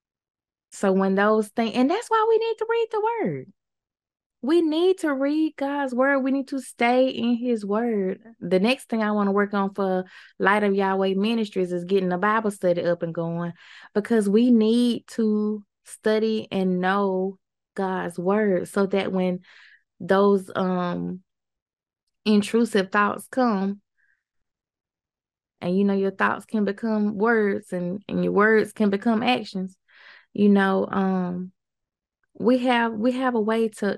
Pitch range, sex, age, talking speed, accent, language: 185-220 Hz, female, 20-39, 155 wpm, American, English